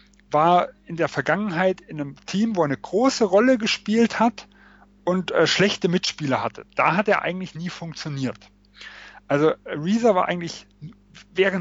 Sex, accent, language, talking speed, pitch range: male, German, German, 155 wpm, 140-185 Hz